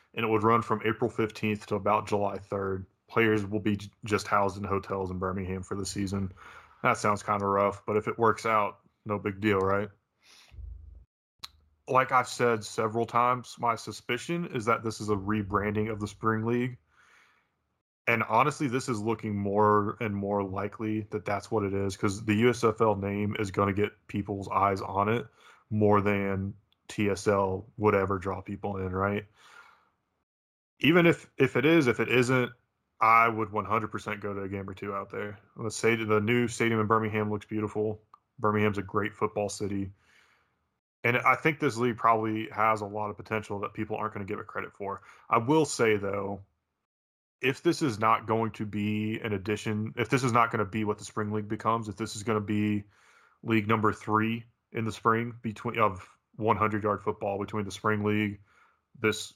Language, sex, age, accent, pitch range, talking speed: English, male, 20-39, American, 100-115 Hz, 190 wpm